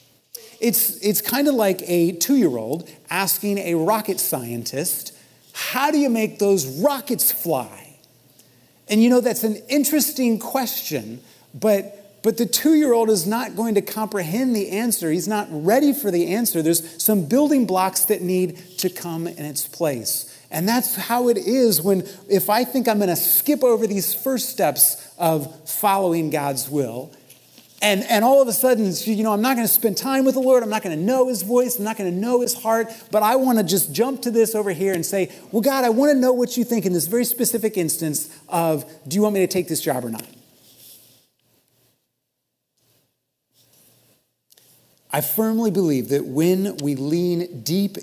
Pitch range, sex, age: 160-230 Hz, male, 30-49